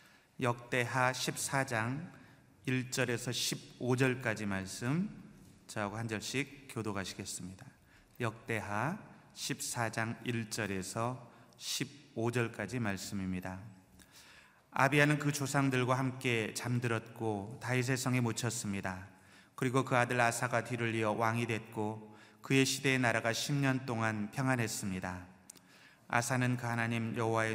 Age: 30-49